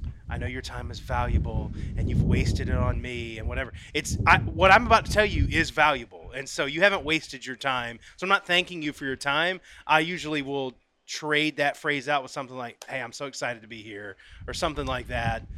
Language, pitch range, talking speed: English, 110-150 Hz, 225 wpm